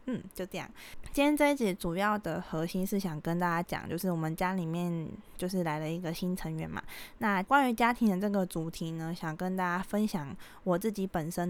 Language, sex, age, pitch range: Chinese, female, 20-39, 170-210 Hz